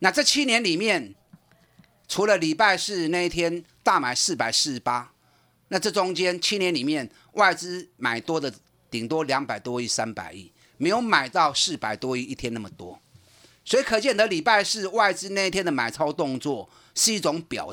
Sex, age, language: male, 30-49, Chinese